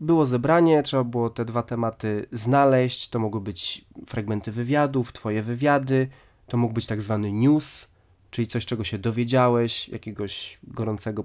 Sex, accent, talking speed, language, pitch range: male, native, 150 wpm, Polish, 115-140 Hz